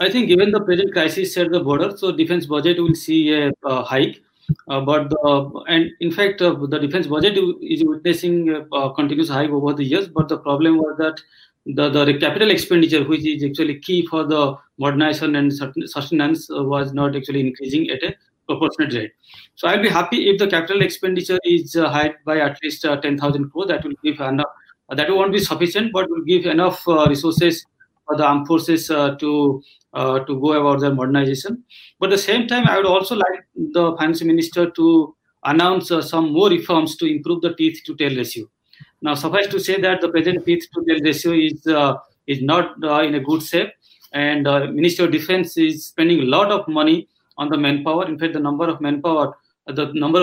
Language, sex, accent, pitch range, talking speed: English, male, Indian, 145-175 Hz, 205 wpm